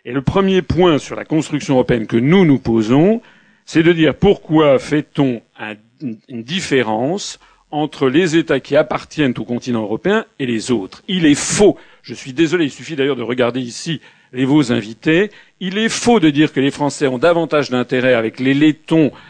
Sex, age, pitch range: male, 50-69, 125-185 Hz